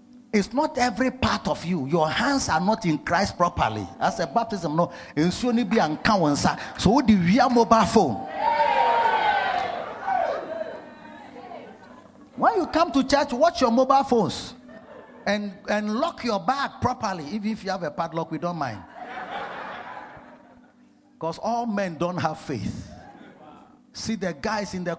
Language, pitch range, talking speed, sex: English, 170-265 Hz, 140 wpm, male